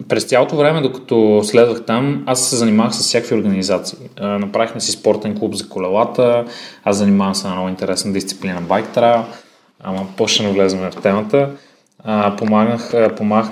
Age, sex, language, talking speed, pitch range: 20-39, male, Bulgarian, 145 wpm, 105-140 Hz